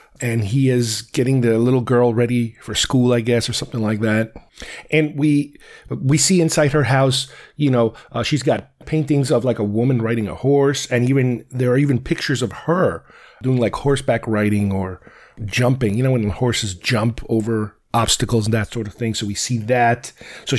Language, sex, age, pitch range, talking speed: English, male, 30-49, 115-140 Hz, 195 wpm